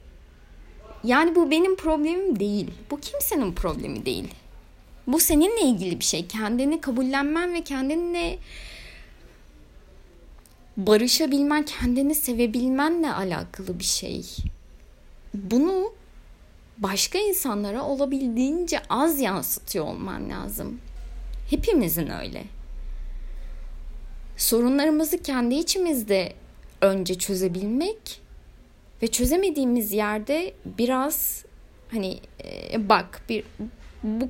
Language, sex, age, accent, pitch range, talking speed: Turkish, female, 30-49, native, 195-290 Hz, 80 wpm